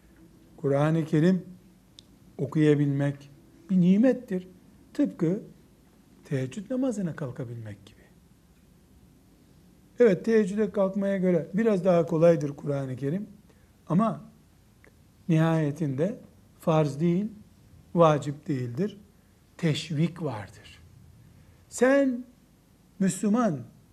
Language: Turkish